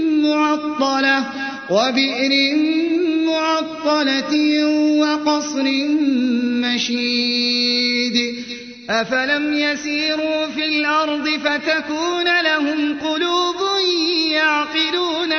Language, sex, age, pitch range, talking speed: Arabic, male, 30-49, 265-310 Hz, 50 wpm